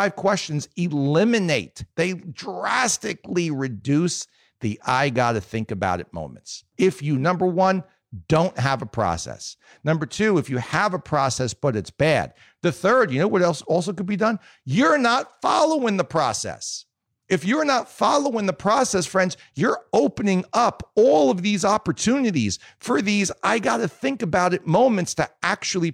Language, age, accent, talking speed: English, 50-69, American, 160 wpm